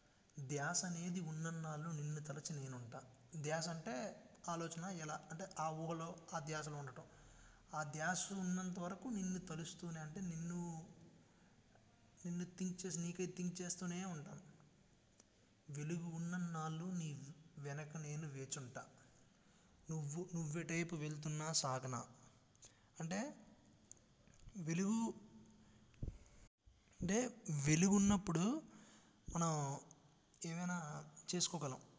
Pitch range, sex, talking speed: 150-180 Hz, male, 95 wpm